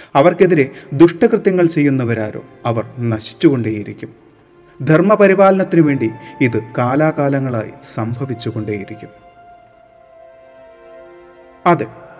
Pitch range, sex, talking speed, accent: 115-175 Hz, male, 60 wpm, native